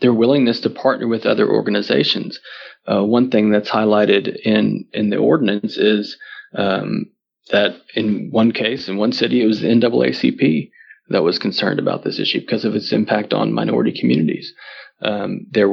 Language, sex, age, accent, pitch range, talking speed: English, male, 30-49, American, 100-115 Hz, 170 wpm